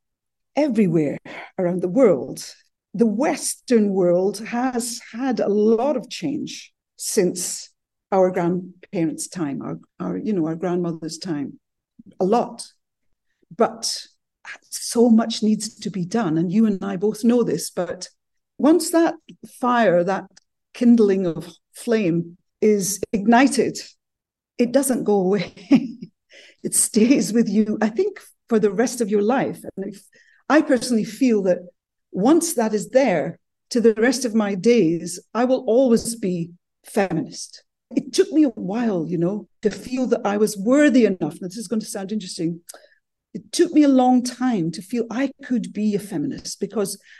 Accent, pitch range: British, 195-255 Hz